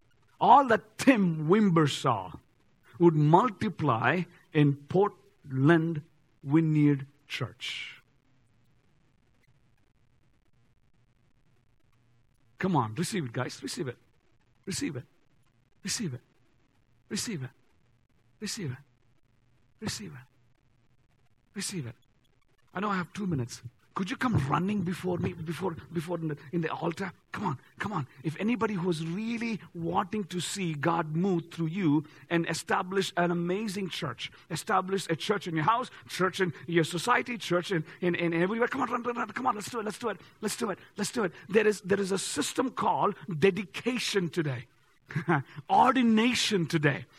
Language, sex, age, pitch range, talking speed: English, male, 50-69, 130-195 Hz, 155 wpm